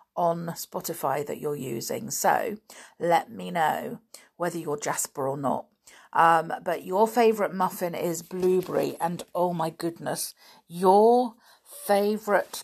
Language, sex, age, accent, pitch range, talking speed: English, female, 50-69, British, 165-215 Hz, 130 wpm